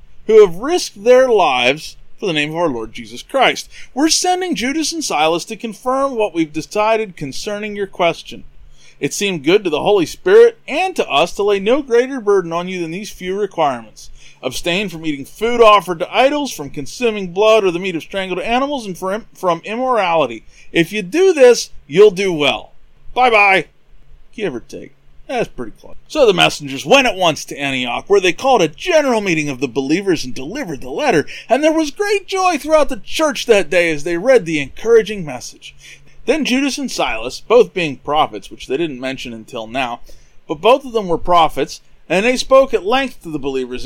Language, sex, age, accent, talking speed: English, male, 30-49, American, 195 wpm